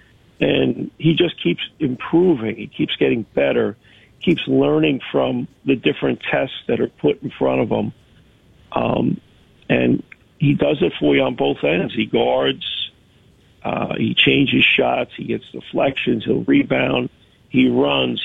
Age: 50-69